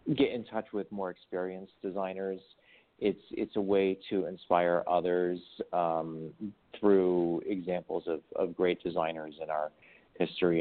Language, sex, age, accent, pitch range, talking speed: English, male, 40-59, American, 85-100 Hz, 135 wpm